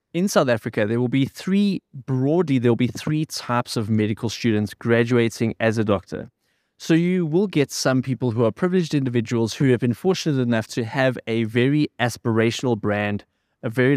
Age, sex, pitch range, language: 20-39, male, 110-130 Hz, English